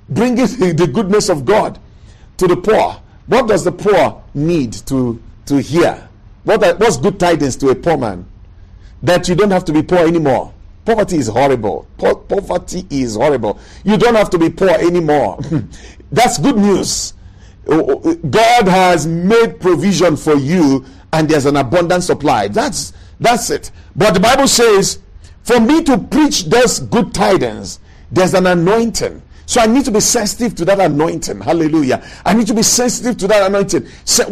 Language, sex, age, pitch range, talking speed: English, male, 50-69, 145-215 Hz, 165 wpm